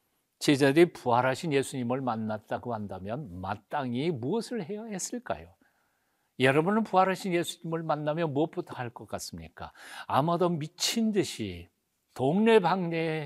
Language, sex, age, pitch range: Korean, male, 50-69, 115-180 Hz